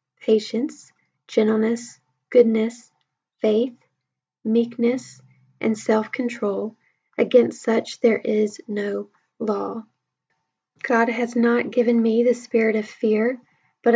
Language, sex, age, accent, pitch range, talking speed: English, female, 10-29, American, 215-240 Hz, 100 wpm